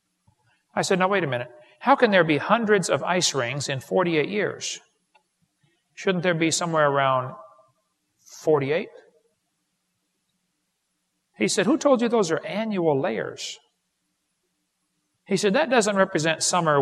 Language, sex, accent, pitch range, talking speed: English, male, American, 145-205 Hz, 135 wpm